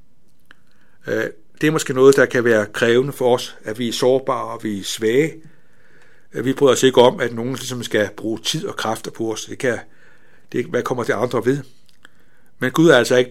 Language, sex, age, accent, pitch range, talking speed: Danish, male, 60-79, native, 115-140 Hz, 215 wpm